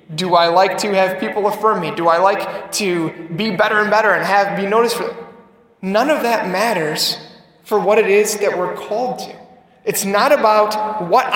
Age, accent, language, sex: 20-39, American, English, male